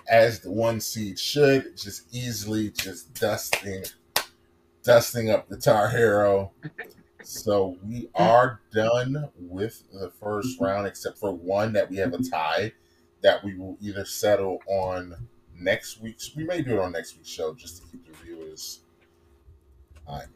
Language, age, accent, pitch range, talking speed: English, 30-49, American, 85-110 Hz, 155 wpm